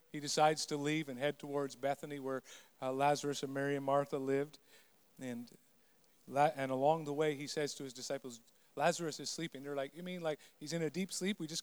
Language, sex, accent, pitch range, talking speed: English, male, American, 145-180 Hz, 210 wpm